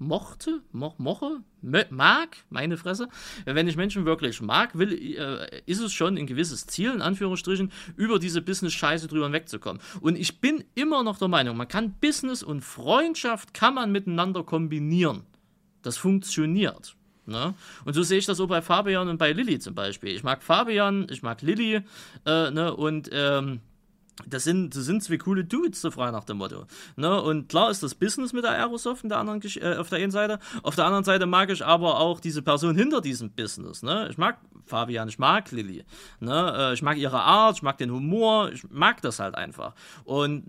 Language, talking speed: German, 195 wpm